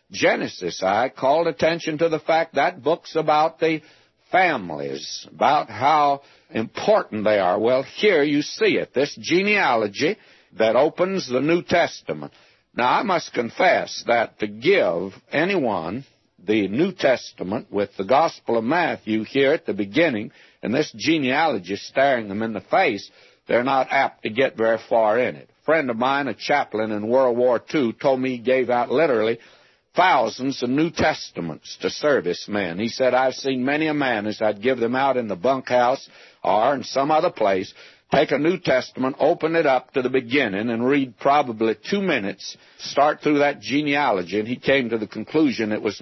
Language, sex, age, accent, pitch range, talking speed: English, male, 60-79, American, 110-150 Hz, 175 wpm